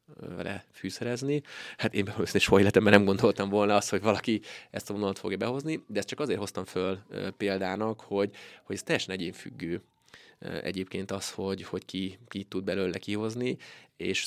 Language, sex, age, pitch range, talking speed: Hungarian, male, 20-39, 95-105 Hz, 175 wpm